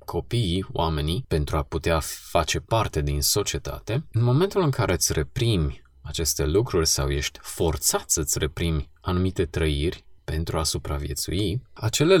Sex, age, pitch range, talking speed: male, 20-39, 80-115 Hz, 145 wpm